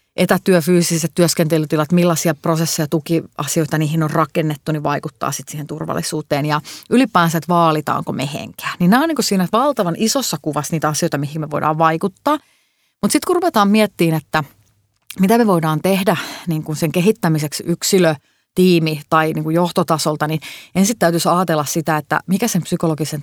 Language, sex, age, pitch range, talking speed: Finnish, female, 30-49, 160-200 Hz, 160 wpm